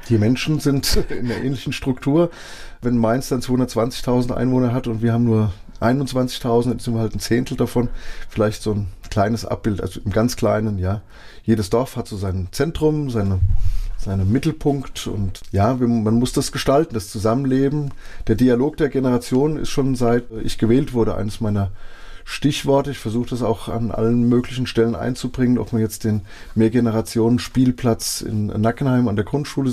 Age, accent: 20-39, German